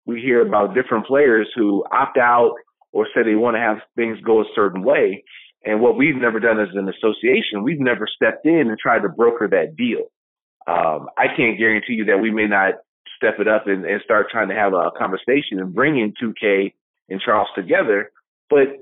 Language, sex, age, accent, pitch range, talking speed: English, male, 30-49, American, 115-190 Hz, 205 wpm